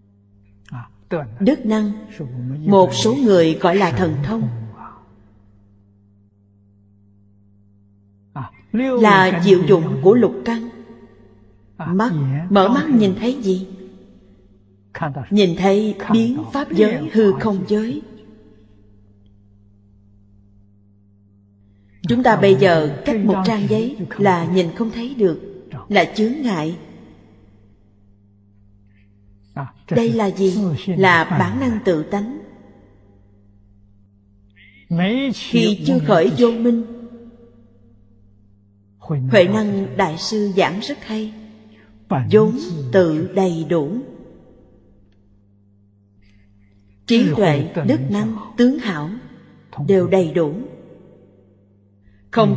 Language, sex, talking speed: Vietnamese, female, 90 wpm